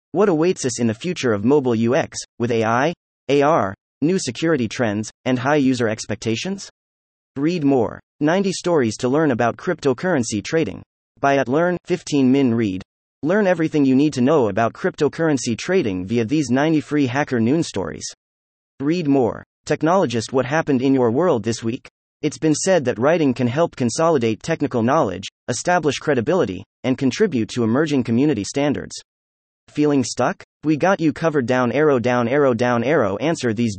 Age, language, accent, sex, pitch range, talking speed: 30-49, English, American, male, 115-155 Hz, 165 wpm